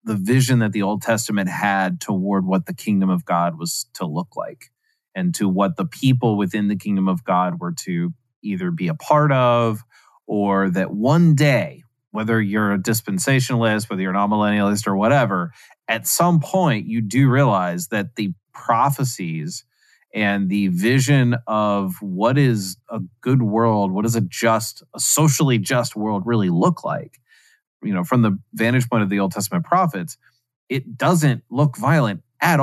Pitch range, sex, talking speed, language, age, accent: 105-140 Hz, male, 170 wpm, English, 30-49, American